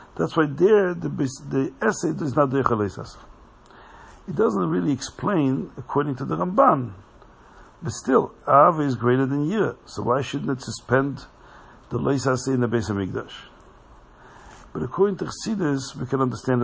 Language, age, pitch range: English, 60-79, 120-150 Hz